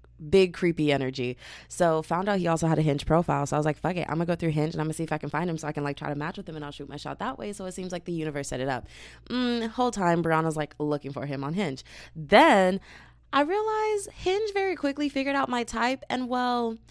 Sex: female